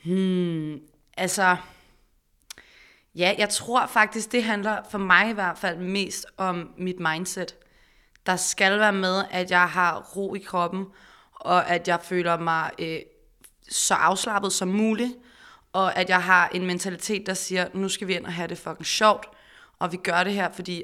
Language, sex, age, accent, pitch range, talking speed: Danish, female, 20-39, native, 175-200 Hz, 175 wpm